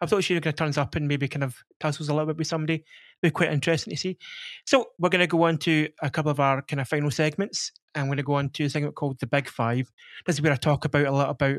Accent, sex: British, male